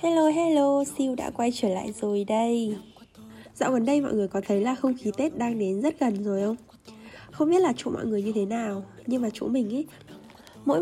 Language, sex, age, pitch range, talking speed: Vietnamese, female, 10-29, 200-260 Hz, 225 wpm